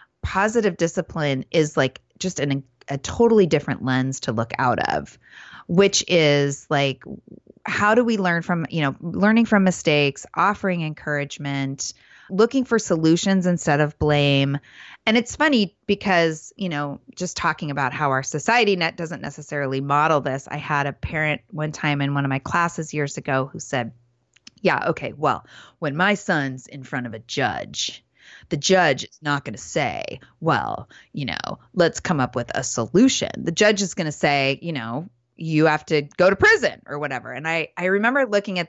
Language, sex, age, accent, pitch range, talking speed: English, female, 30-49, American, 140-195 Hz, 180 wpm